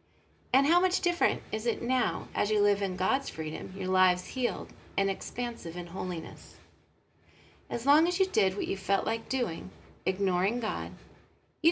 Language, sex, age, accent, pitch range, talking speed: English, female, 30-49, American, 180-265 Hz, 170 wpm